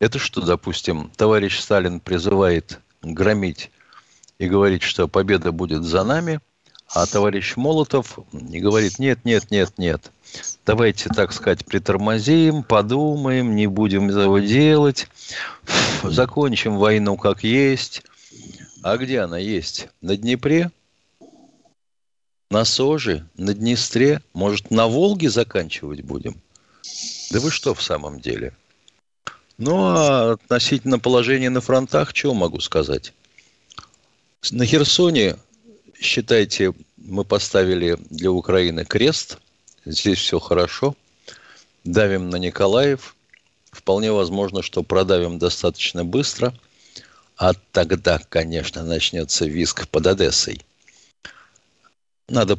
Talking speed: 105 wpm